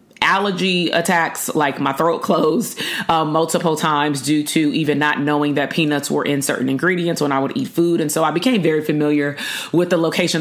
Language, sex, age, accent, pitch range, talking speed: English, female, 30-49, American, 150-185 Hz, 195 wpm